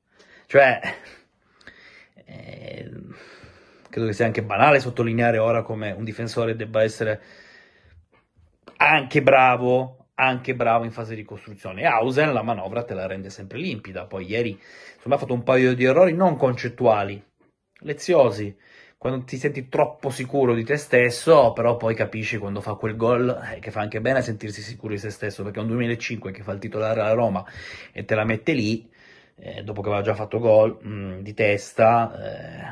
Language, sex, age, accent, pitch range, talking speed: Italian, male, 30-49, native, 105-130 Hz, 170 wpm